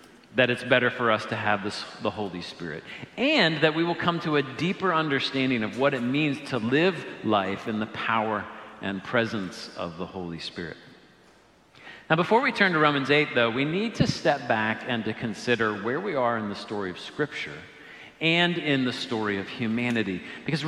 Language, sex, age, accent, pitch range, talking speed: English, male, 50-69, American, 110-155 Hz, 190 wpm